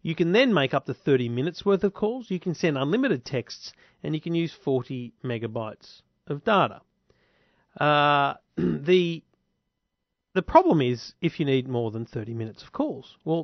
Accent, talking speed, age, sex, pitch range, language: Australian, 175 wpm, 40-59, male, 130-195 Hz, English